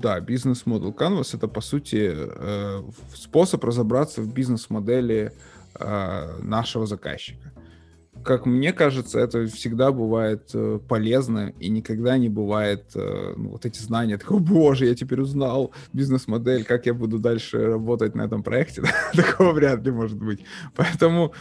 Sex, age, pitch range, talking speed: male, 20-39, 110-135 Hz, 140 wpm